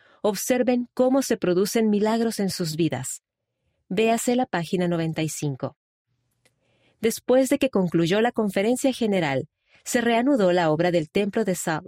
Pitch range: 175-230 Hz